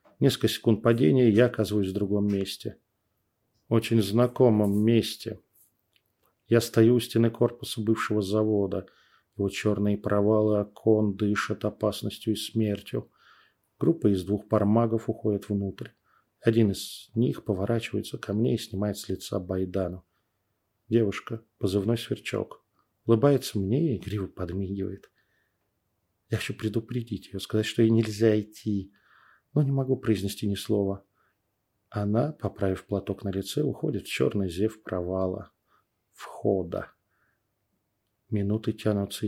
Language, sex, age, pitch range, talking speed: Russian, male, 40-59, 100-115 Hz, 120 wpm